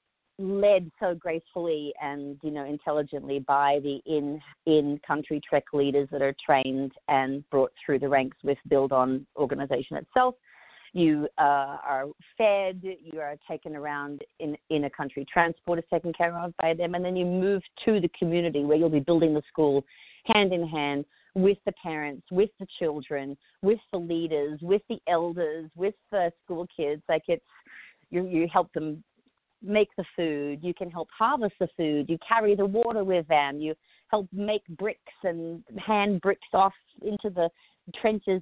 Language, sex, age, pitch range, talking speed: English, female, 40-59, 145-185 Hz, 170 wpm